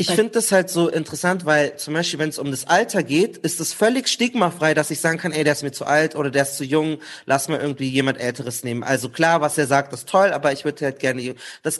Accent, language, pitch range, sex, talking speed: German, German, 150-205 Hz, male, 270 wpm